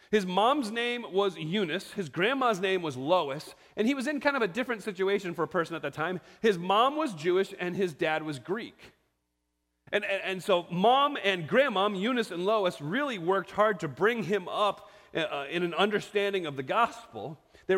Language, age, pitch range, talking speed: English, 30-49, 165-230 Hz, 200 wpm